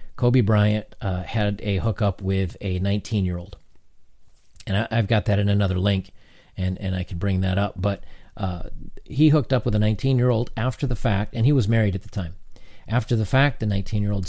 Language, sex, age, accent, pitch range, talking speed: English, male, 40-59, American, 100-120 Hz, 195 wpm